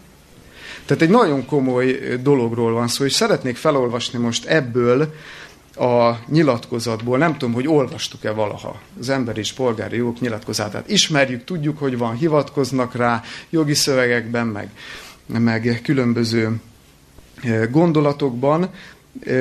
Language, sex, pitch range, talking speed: Hungarian, male, 115-145 Hz, 115 wpm